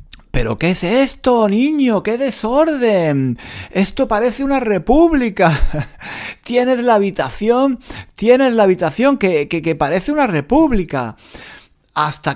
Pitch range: 105-165 Hz